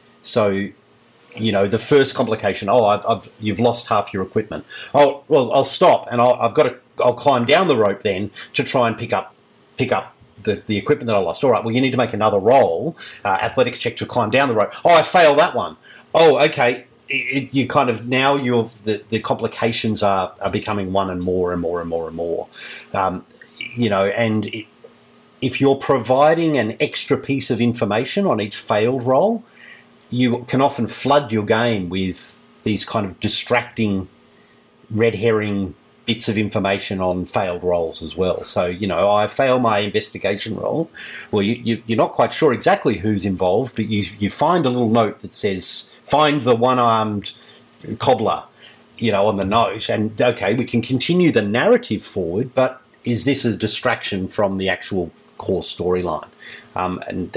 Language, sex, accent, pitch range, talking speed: English, male, Australian, 100-125 Hz, 190 wpm